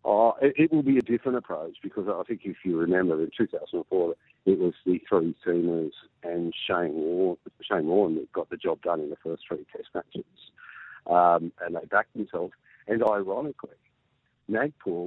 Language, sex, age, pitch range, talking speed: English, male, 50-69, 85-115 Hz, 175 wpm